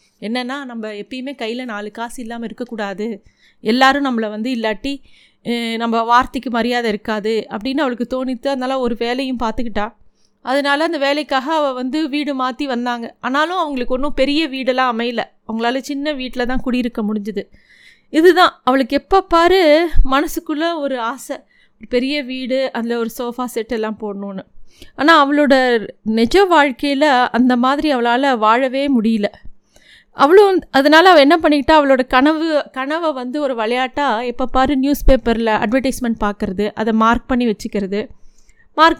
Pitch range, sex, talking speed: 235-285 Hz, female, 135 wpm